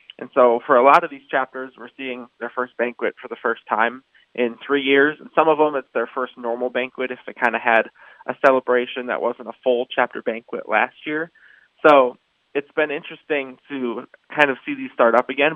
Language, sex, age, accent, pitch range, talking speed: English, male, 20-39, American, 120-140 Hz, 215 wpm